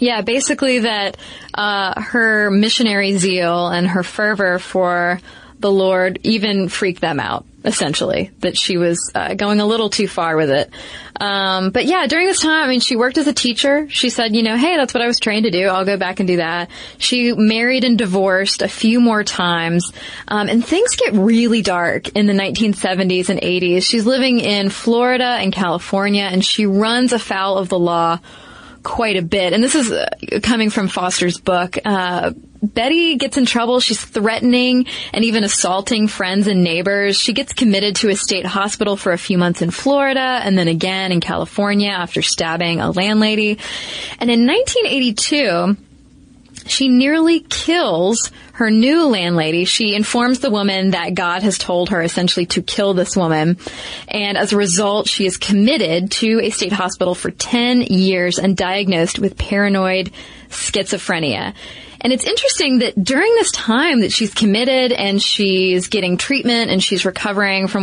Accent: American